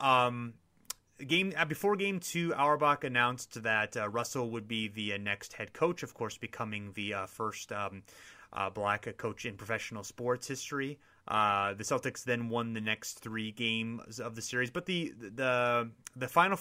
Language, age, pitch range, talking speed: English, 30-49, 110-135 Hz, 170 wpm